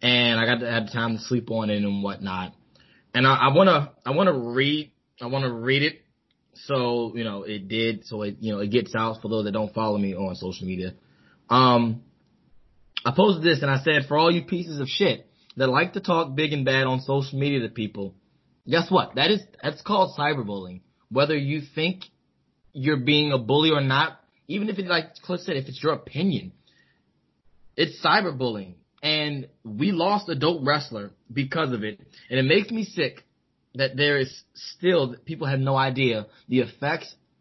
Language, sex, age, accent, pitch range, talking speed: English, male, 20-39, American, 115-155 Hz, 190 wpm